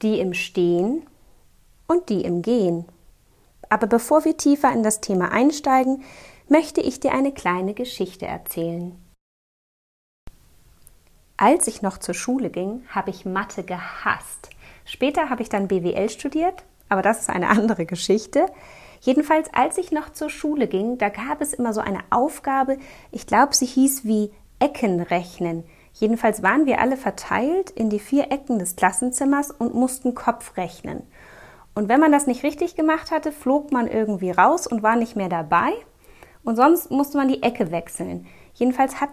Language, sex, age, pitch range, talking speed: German, female, 30-49, 195-280 Hz, 160 wpm